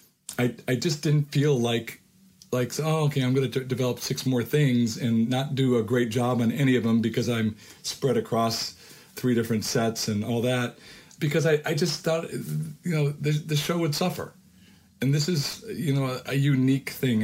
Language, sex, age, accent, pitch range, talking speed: English, male, 40-59, American, 105-130 Hz, 200 wpm